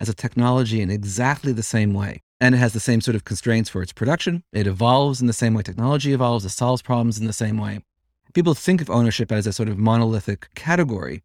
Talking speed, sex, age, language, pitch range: 235 wpm, male, 30-49, English, 105-130 Hz